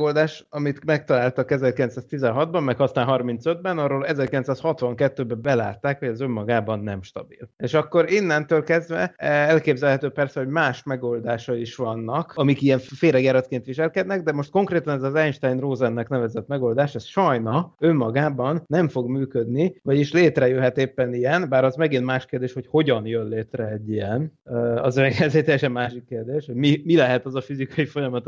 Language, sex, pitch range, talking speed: Hungarian, male, 125-150 Hz, 155 wpm